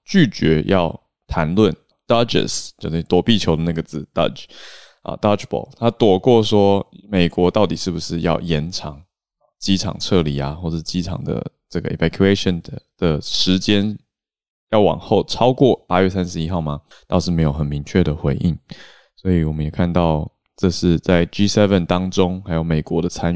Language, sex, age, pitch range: Chinese, male, 20-39, 80-100 Hz